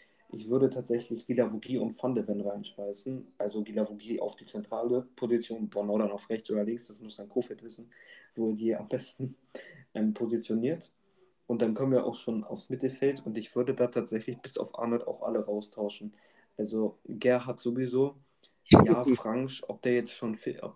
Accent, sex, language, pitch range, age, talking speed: German, male, German, 110-125 Hz, 20-39, 175 wpm